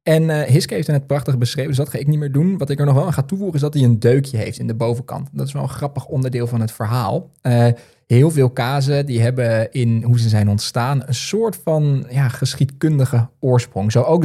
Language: Dutch